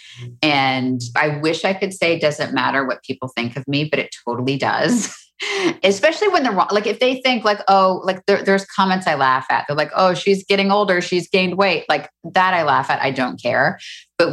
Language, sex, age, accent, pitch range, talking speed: English, female, 30-49, American, 135-185 Hz, 215 wpm